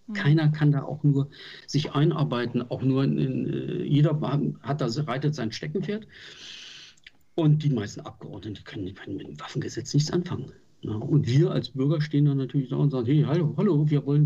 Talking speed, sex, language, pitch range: 185 wpm, male, German, 130-155 Hz